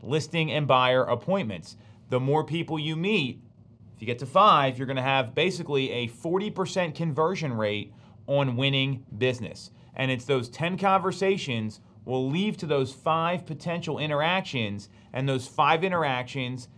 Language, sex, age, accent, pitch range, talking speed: English, male, 30-49, American, 130-185 Hz, 145 wpm